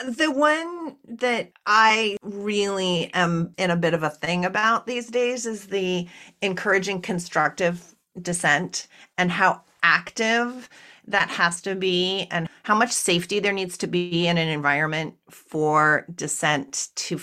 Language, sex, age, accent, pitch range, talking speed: English, female, 40-59, American, 165-220 Hz, 145 wpm